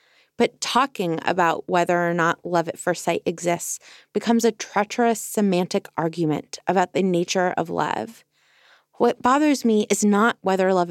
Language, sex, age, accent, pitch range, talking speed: English, female, 20-39, American, 170-210 Hz, 155 wpm